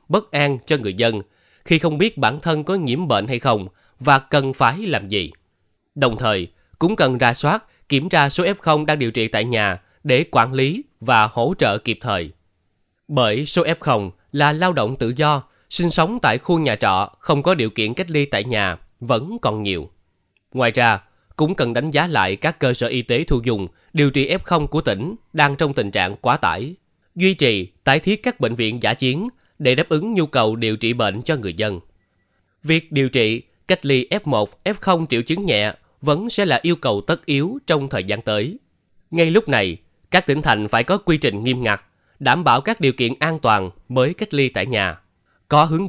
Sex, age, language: male, 20-39, Vietnamese